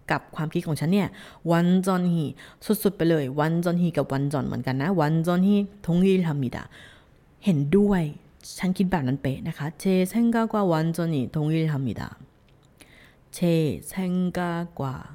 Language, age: Korean, 20-39